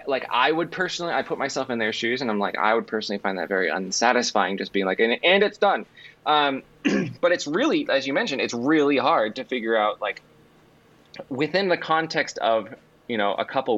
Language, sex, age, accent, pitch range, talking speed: English, male, 20-39, American, 105-155 Hz, 215 wpm